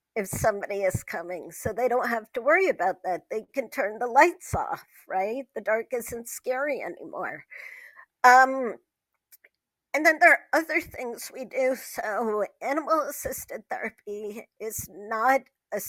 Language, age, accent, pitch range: English, 50-69, American, 210-270 Hz